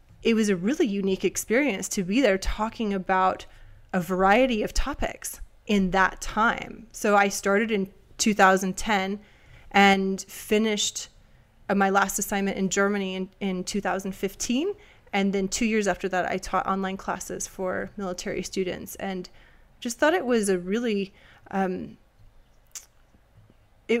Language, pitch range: English, 190-225 Hz